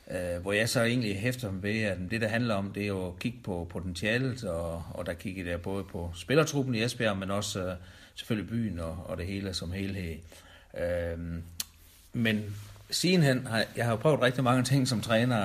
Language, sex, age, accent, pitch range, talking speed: Danish, male, 60-79, native, 90-110 Hz, 205 wpm